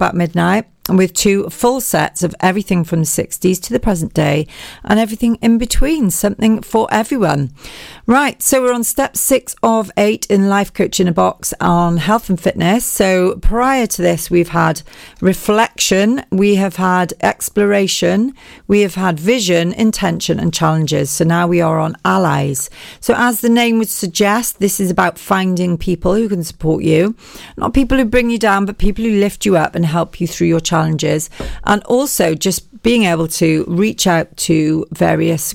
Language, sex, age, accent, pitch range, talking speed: English, female, 40-59, British, 165-210 Hz, 185 wpm